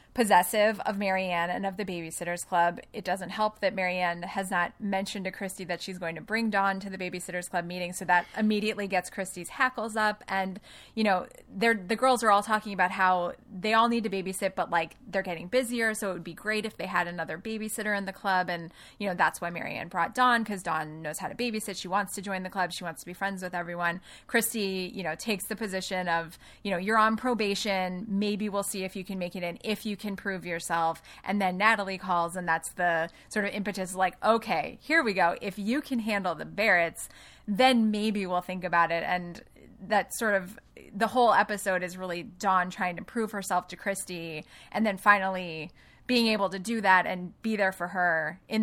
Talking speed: 220 wpm